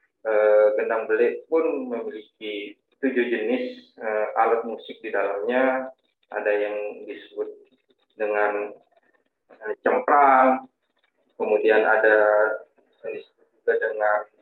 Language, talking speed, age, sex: Indonesian, 90 wpm, 20-39, male